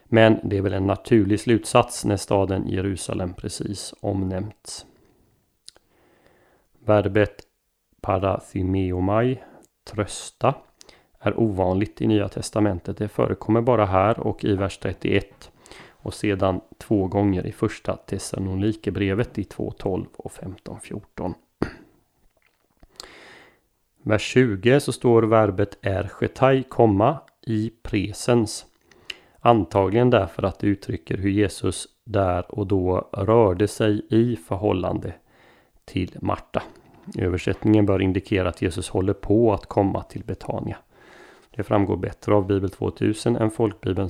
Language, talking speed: Swedish, 115 wpm